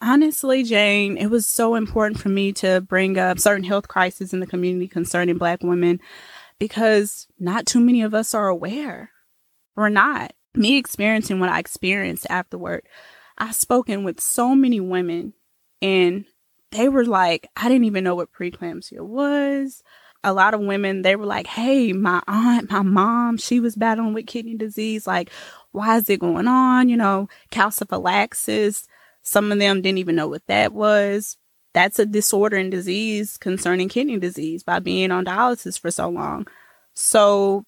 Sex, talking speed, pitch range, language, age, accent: female, 165 wpm, 185-225 Hz, English, 20-39, American